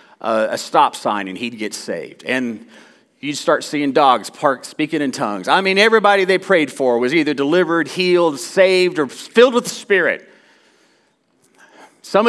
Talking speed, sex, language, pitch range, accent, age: 160 wpm, male, English, 125-195 Hz, American, 40-59